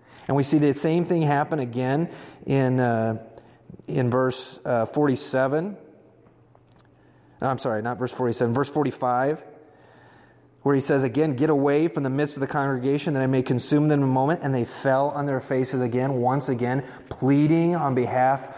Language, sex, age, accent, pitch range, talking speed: English, male, 30-49, American, 120-145 Hz, 175 wpm